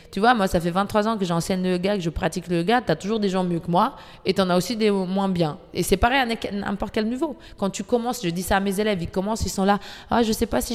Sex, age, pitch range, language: female, 20-39, 170-215 Hz, French